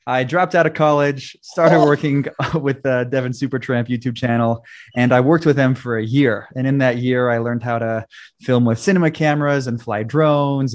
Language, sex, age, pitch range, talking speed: English, male, 20-39, 115-145 Hz, 200 wpm